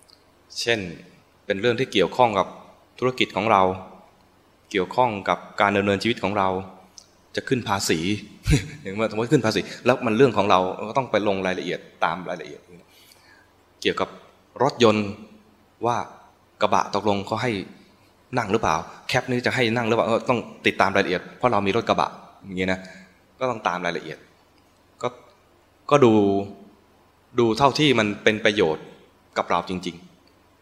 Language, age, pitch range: English, 20-39, 90-110 Hz